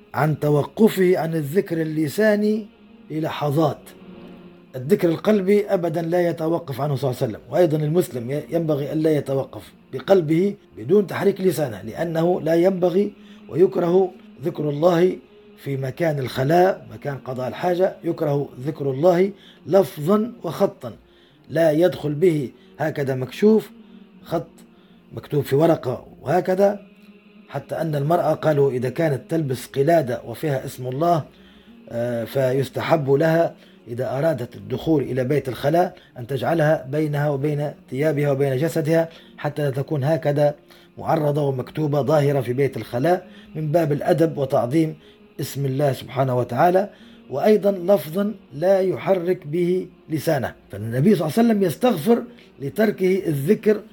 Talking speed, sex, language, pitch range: 125 wpm, male, Arabic, 140-190 Hz